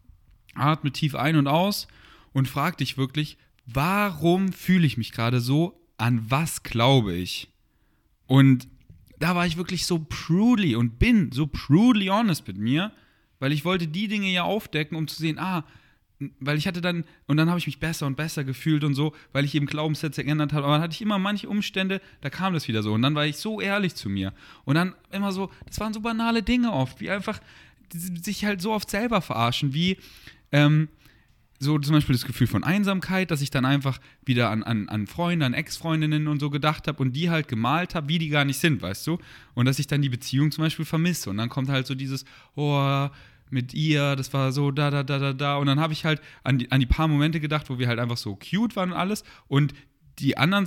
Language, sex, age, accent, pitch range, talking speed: German, male, 10-29, German, 135-175 Hz, 225 wpm